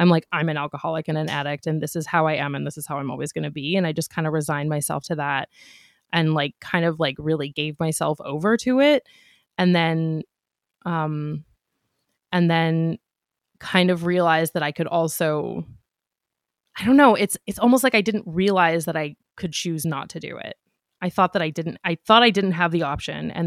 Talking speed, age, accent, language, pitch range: 220 wpm, 20-39, American, English, 155-180 Hz